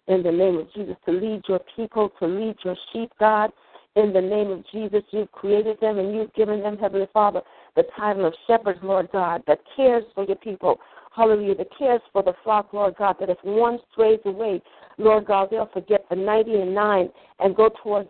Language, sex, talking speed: English, female, 210 wpm